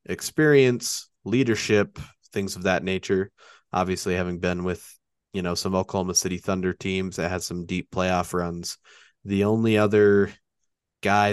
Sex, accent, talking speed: male, American, 145 wpm